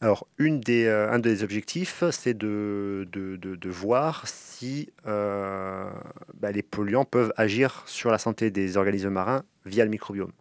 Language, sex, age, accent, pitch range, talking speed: French, male, 30-49, French, 100-115 Hz, 145 wpm